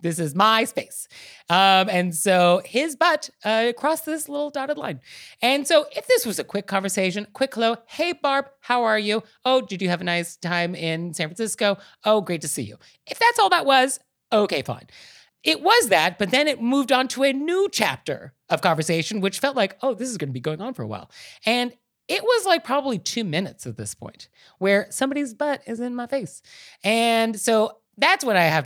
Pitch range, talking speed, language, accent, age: 165-250 Hz, 215 wpm, English, American, 30-49